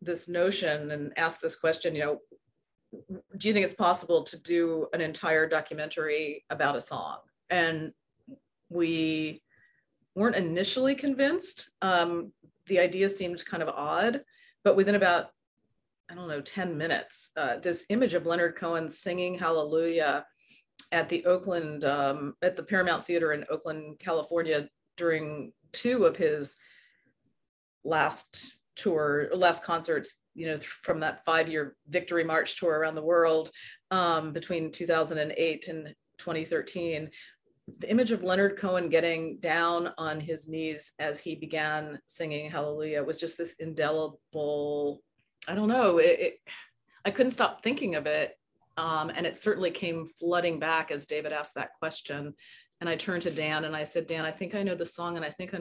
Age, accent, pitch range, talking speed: 30-49, American, 155-180 Hz, 155 wpm